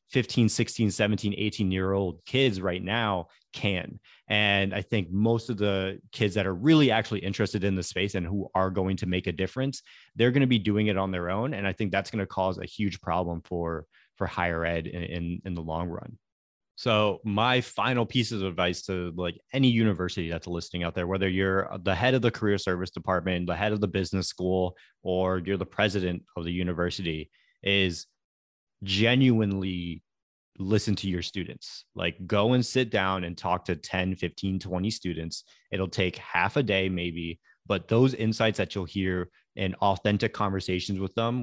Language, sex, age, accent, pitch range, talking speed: English, male, 30-49, American, 90-105 Hz, 190 wpm